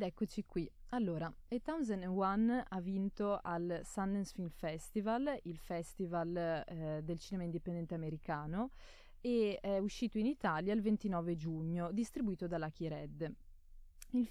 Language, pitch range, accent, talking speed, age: Italian, 170-220 Hz, native, 140 wpm, 20-39